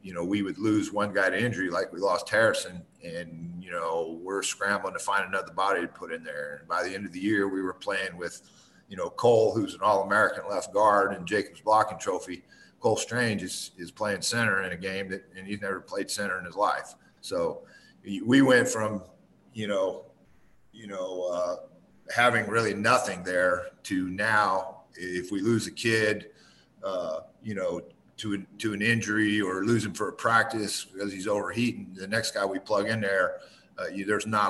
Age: 50-69